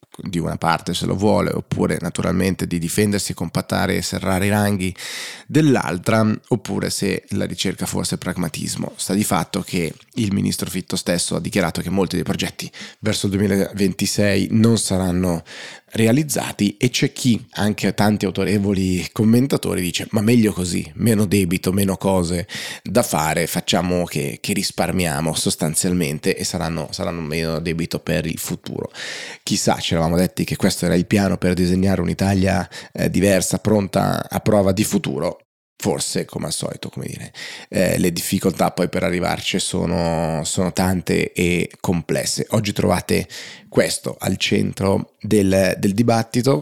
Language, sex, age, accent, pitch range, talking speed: Italian, male, 20-39, native, 90-105 Hz, 145 wpm